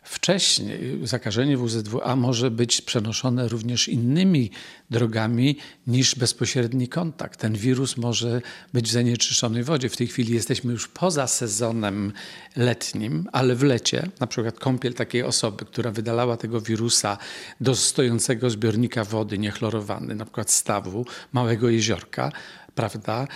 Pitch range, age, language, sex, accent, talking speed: 115-130 Hz, 50-69, Polish, male, native, 125 wpm